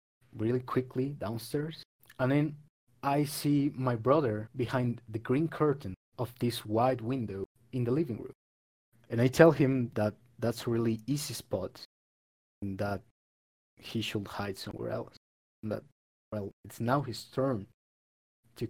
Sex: male